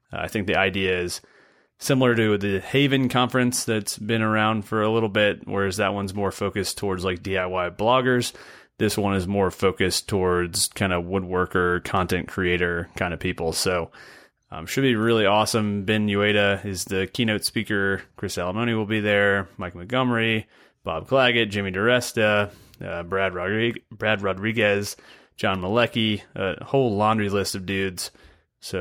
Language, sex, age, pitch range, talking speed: English, male, 30-49, 95-115 Hz, 160 wpm